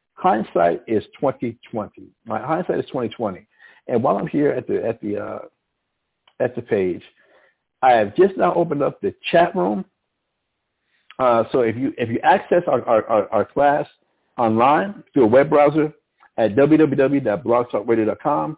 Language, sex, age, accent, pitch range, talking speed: English, male, 60-79, American, 105-145 Hz, 150 wpm